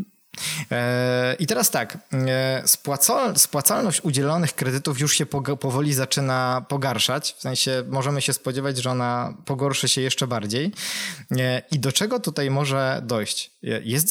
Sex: male